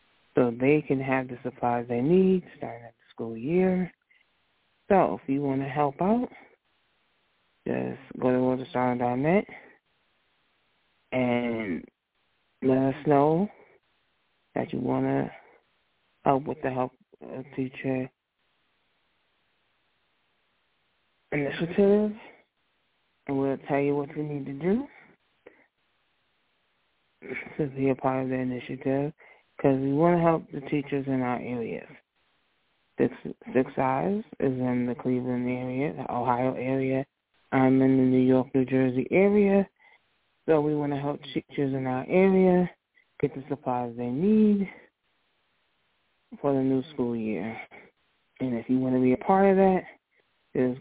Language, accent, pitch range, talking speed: English, American, 125-150 Hz, 135 wpm